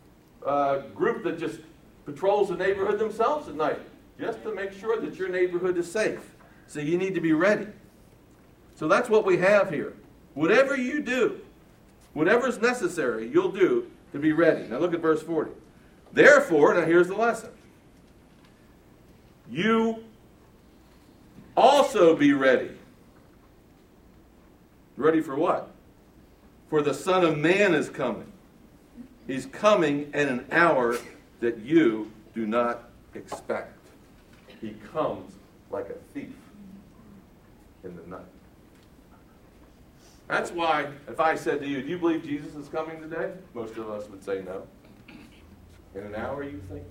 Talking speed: 140 wpm